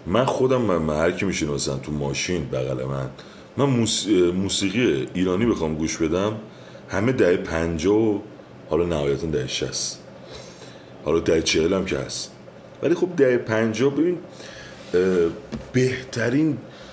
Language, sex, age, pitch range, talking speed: Persian, male, 40-59, 75-115 Hz, 120 wpm